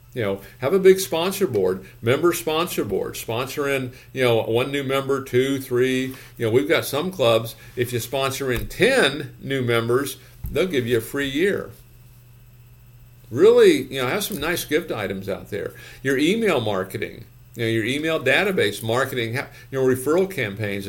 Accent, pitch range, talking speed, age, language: American, 115-140 Hz, 170 wpm, 50-69, English